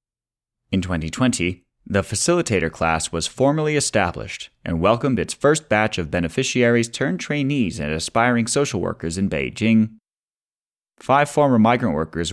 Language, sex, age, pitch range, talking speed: English, male, 30-49, 85-120 Hz, 120 wpm